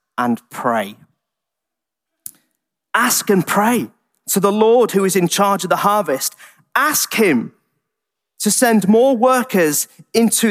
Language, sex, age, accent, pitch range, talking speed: English, male, 30-49, British, 155-195 Hz, 125 wpm